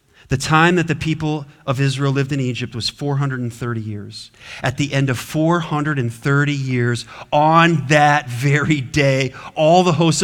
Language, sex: English, male